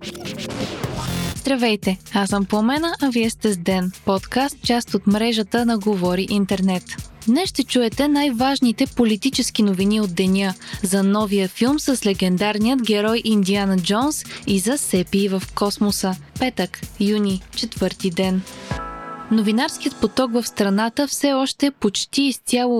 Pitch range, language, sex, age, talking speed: 195-255 Hz, Bulgarian, female, 20-39, 130 wpm